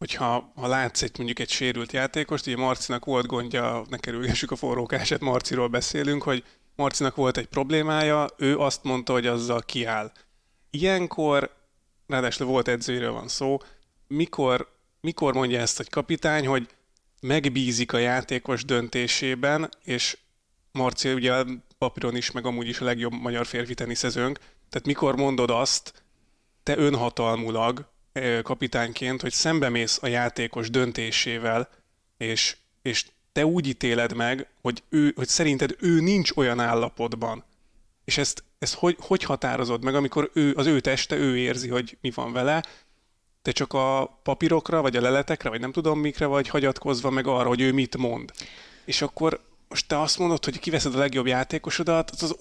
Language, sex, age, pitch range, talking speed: Hungarian, male, 30-49, 120-145 Hz, 155 wpm